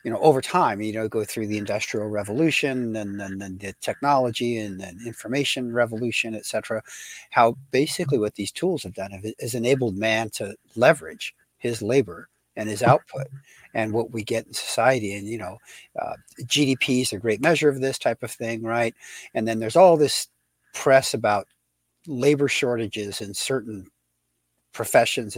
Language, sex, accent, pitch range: English, male, American, 105-130 Hz